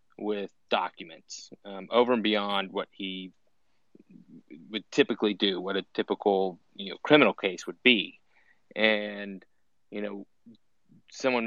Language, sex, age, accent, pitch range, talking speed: English, male, 30-49, American, 100-110 Hz, 125 wpm